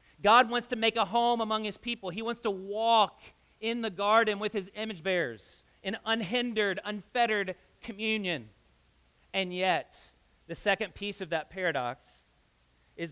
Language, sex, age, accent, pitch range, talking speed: English, male, 40-59, American, 120-195 Hz, 150 wpm